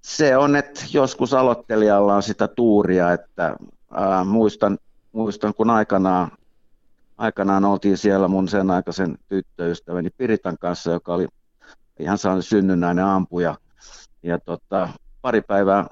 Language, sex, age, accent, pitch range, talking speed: Finnish, male, 60-79, native, 90-110 Hz, 125 wpm